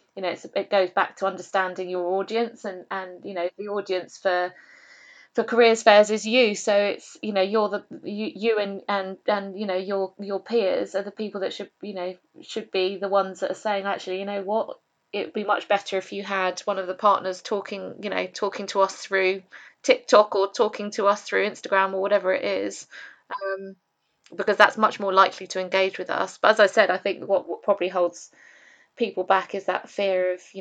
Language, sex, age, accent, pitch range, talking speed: English, female, 20-39, British, 190-210 Hz, 220 wpm